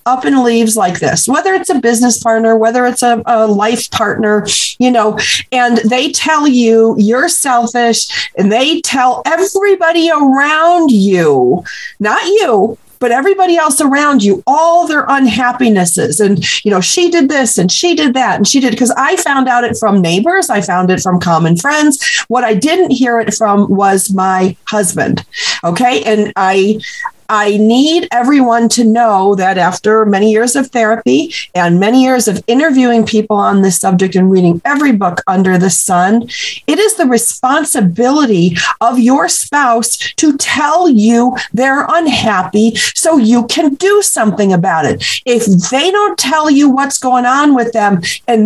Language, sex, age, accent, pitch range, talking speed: English, female, 40-59, American, 210-295 Hz, 170 wpm